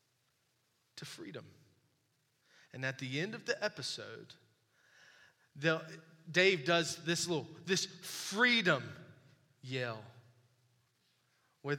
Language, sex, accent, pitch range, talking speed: English, male, American, 140-215 Hz, 90 wpm